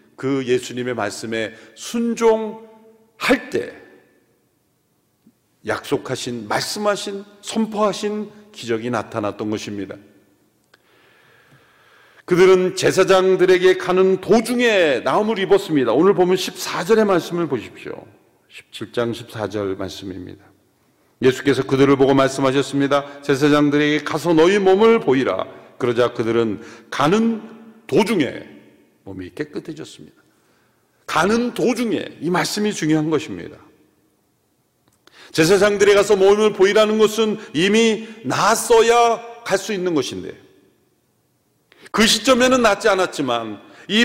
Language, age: Korean, 40-59